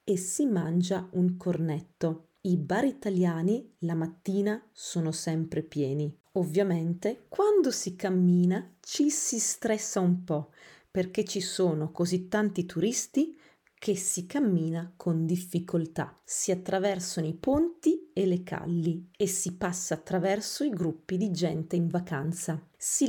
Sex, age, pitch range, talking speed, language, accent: female, 30-49, 170-210 Hz, 135 wpm, Italian, native